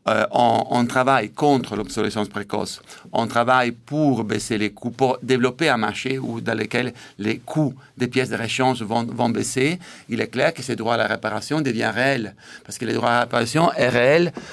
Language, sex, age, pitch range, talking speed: French, male, 50-69, 120-145 Hz, 200 wpm